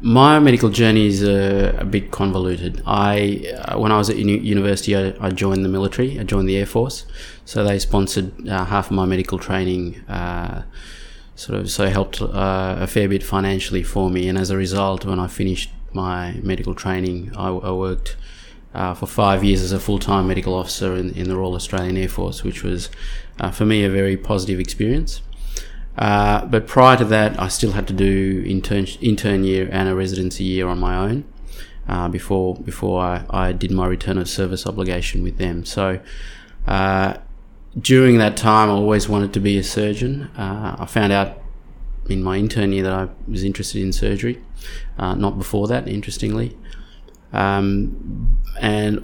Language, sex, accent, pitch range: English, male, Australian, 95-105 Hz